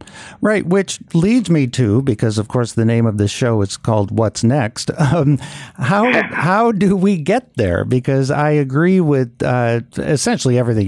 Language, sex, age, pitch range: English, male, 50-69, 115-150 Hz